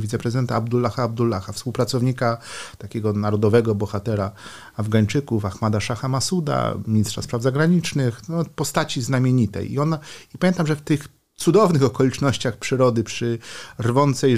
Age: 40-59